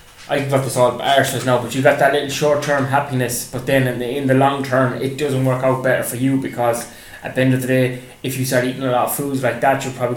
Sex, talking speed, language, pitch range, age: male, 285 wpm, English, 125-150 Hz, 20-39